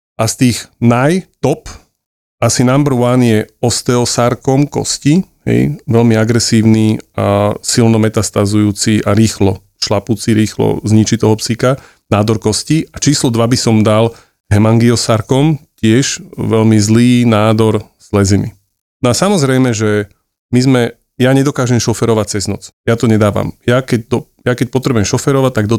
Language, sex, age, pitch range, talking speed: Slovak, male, 30-49, 105-125 Hz, 145 wpm